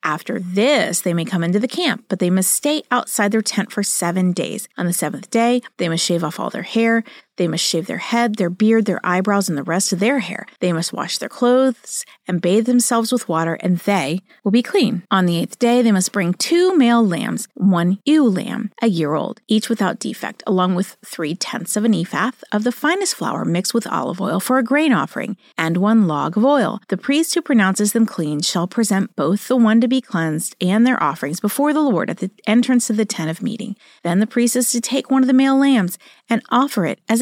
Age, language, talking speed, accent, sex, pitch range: 40-59, English, 230 wpm, American, female, 185-245 Hz